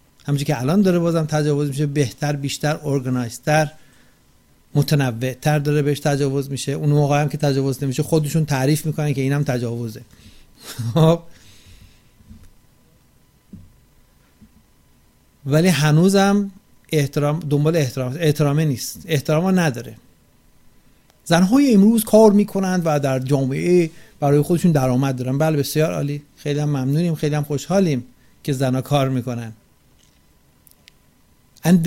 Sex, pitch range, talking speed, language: male, 135-180 Hz, 115 wpm, Persian